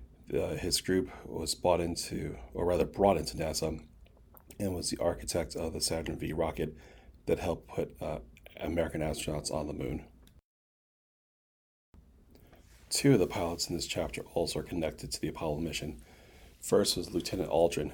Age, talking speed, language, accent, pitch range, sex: 30-49, 155 wpm, English, American, 75-90 Hz, male